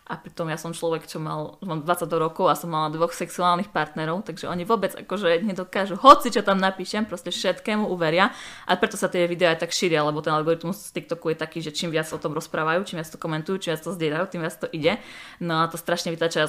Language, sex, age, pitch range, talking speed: Slovak, female, 20-39, 165-185 Hz, 245 wpm